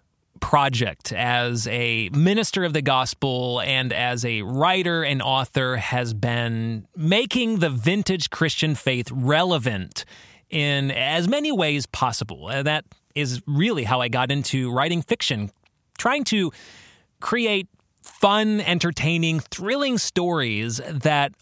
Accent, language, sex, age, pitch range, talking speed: American, English, male, 30-49, 130-180 Hz, 120 wpm